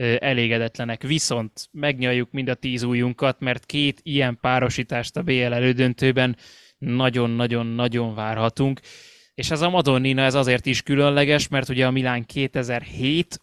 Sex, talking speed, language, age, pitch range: male, 130 wpm, Hungarian, 20-39, 125-145 Hz